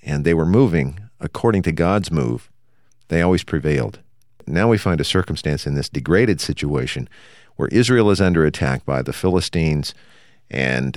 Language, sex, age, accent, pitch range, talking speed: English, male, 50-69, American, 75-105 Hz, 160 wpm